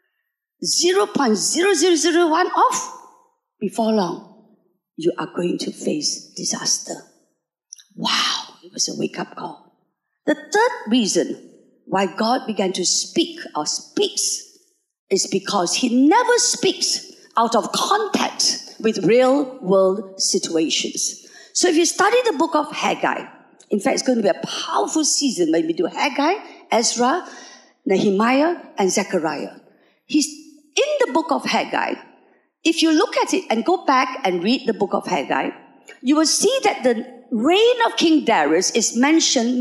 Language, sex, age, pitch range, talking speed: English, female, 50-69, 225-350 Hz, 140 wpm